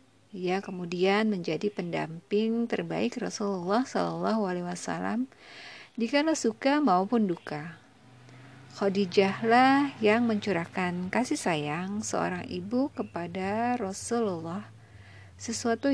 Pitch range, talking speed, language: 170-230 Hz, 90 wpm, Indonesian